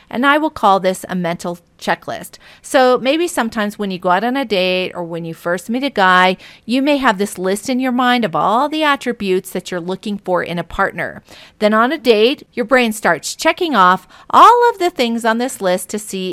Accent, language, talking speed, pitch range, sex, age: American, English, 230 wpm, 180-240 Hz, female, 40-59